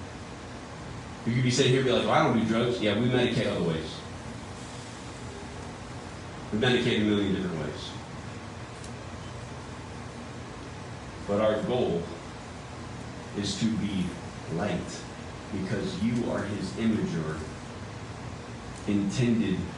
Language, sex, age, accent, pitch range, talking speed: English, male, 40-59, American, 100-125 Hz, 110 wpm